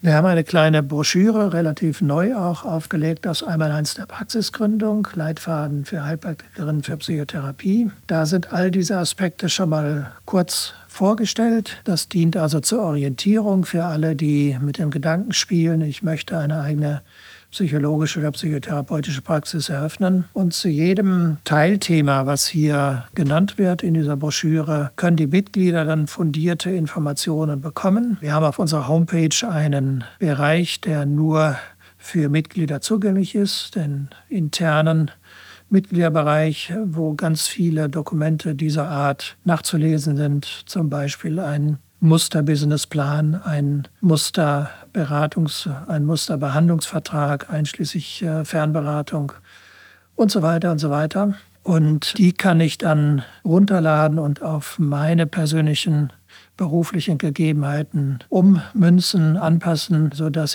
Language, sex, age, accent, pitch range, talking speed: German, male, 60-79, German, 150-175 Hz, 120 wpm